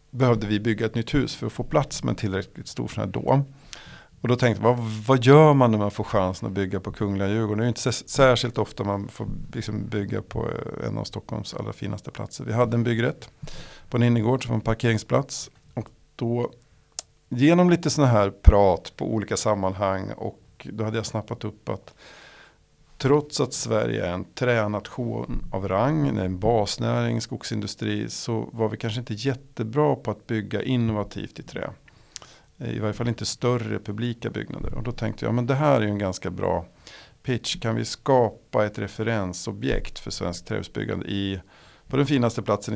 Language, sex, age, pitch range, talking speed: Swedish, male, 50-69, 100-120 Hz, 185 wpm